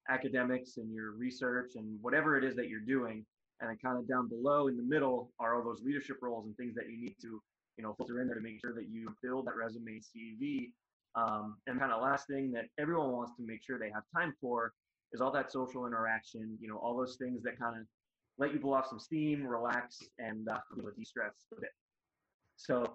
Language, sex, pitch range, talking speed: English, male, 115-135 Hz, 235 wpm